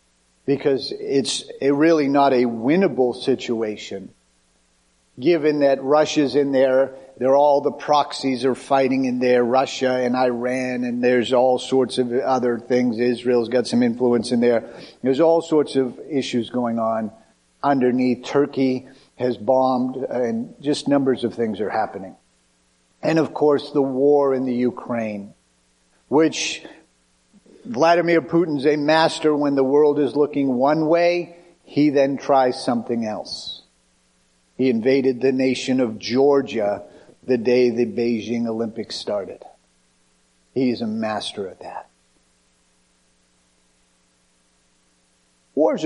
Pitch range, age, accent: 100-140 Hz, 50-69, American